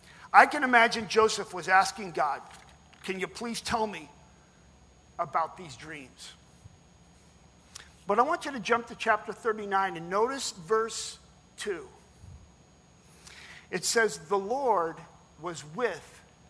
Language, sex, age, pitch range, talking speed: English, male, 50-69, 190-270 Hz, 125 wpm